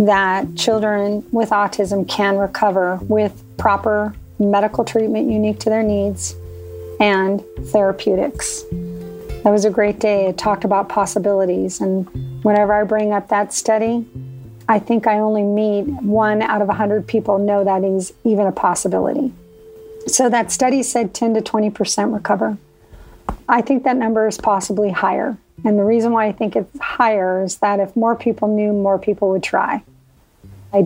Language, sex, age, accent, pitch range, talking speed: English, female, 40-59, American, 195-230 Hz, 160 wpm